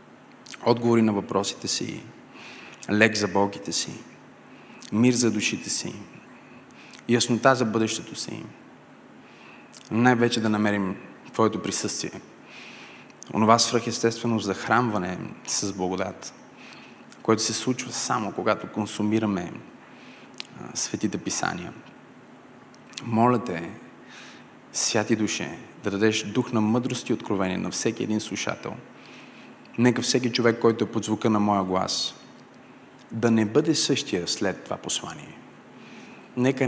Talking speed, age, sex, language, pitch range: 110 wpm, 30-49, male, Bulgarian, 100-120 Hz